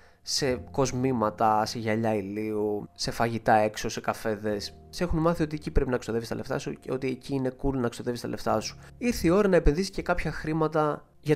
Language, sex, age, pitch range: Greek, male, 20-39, 110-145 Hz